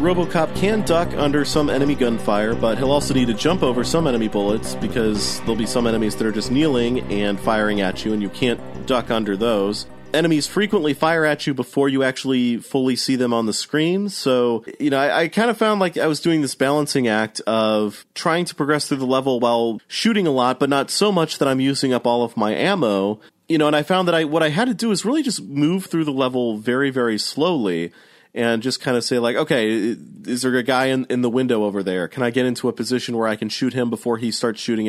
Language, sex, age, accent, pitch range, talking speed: English, male, 30-49, American, 110-155 Hz, 245 wpm